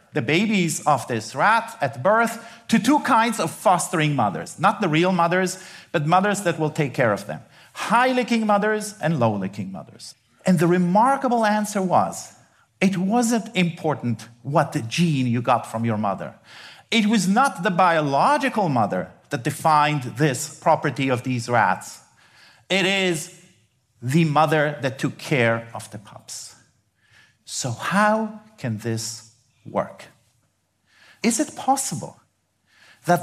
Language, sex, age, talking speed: English, male, 50-69, 140 wpm